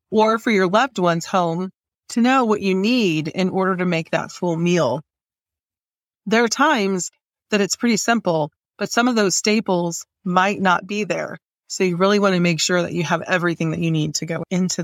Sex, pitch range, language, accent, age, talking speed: female, 180-220 Hz, English, American, 30-49, 205 wpm